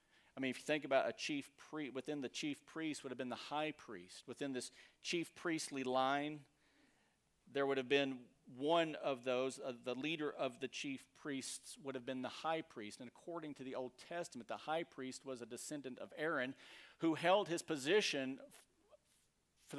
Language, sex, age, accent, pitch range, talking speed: English, male, 40-59, American, 125-160 Hz, 190 wpm